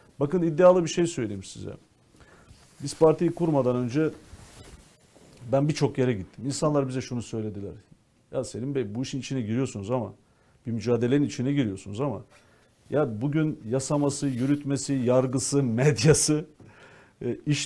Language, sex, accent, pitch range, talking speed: Turkish, male, native, 120-150 Hz, 130 wpm